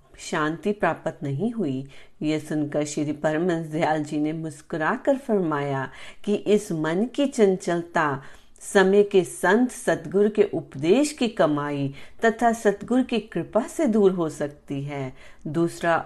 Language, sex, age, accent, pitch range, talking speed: Hindi, female, 40-59, native, 155-205 Hz, 125 wpm